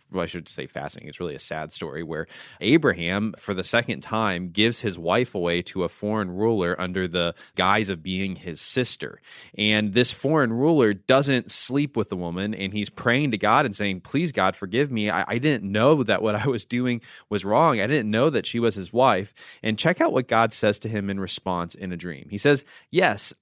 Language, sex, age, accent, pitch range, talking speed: English, male, 20-39, American, 100-135 Hz, 220 wpm